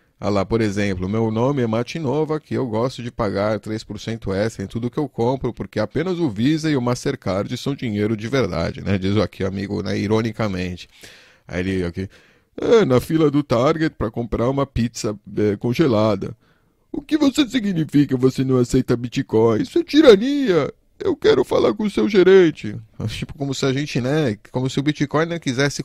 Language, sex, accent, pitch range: Portuguese, male, Brazilian, 105-130 Hz